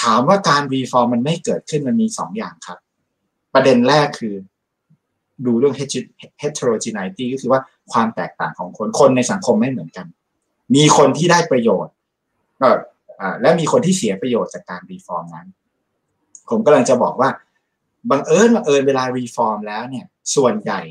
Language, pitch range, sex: Thai, 120-190 Hz, male